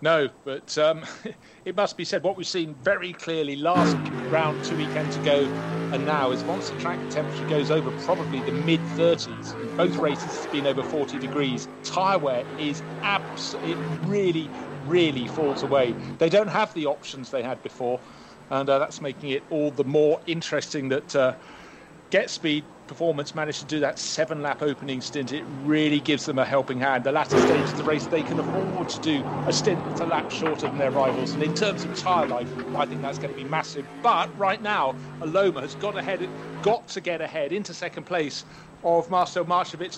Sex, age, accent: male, 40-59, British